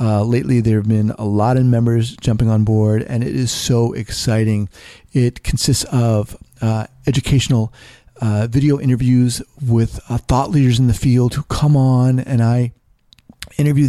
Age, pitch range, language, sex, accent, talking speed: 40-59, 115-135 Hz, English, male, American, 165 wpm